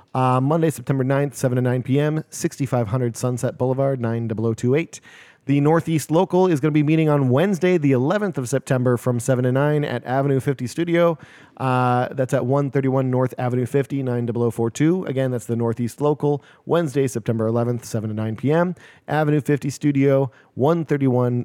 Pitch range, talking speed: 125-150 Hz, 160 wpm